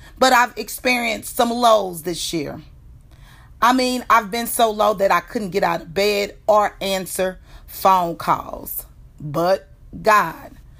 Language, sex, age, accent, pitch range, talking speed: English, female, 40-59, American, 195-275 Hz, 145 wpm